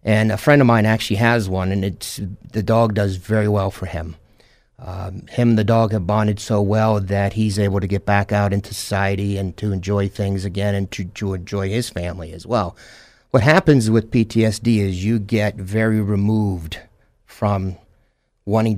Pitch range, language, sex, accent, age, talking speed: 100-115 Hz, English, male, American, 50-69, 185 wpm